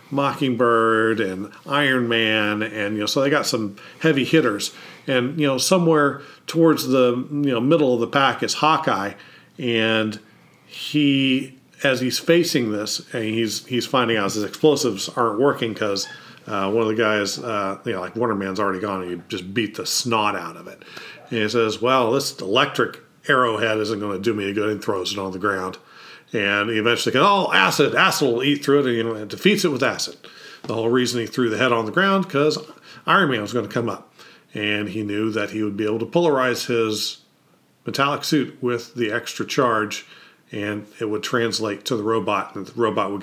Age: 40-59